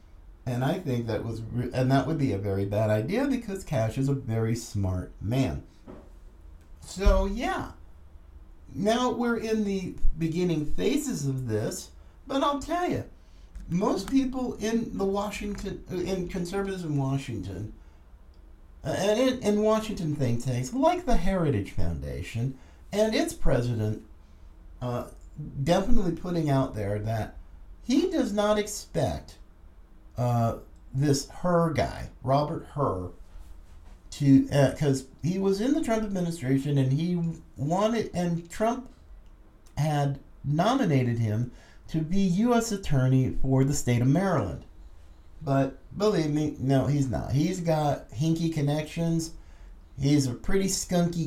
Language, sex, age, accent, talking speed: English, male, 50-69, American, 135 wpm